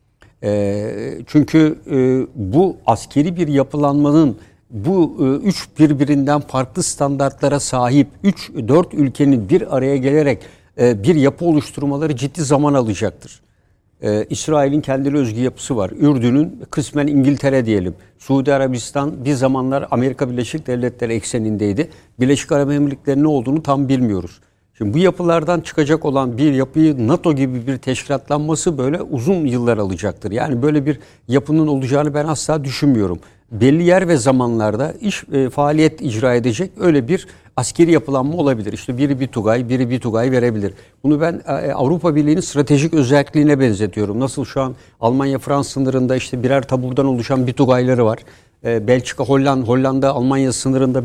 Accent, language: native, Turkish